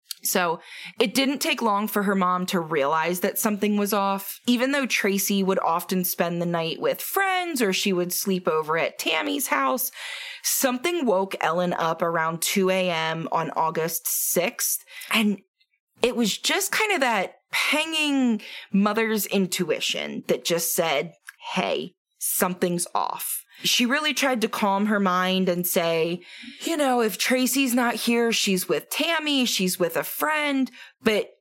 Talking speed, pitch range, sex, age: 155 wpm, 180-250 Hz, female, 20-39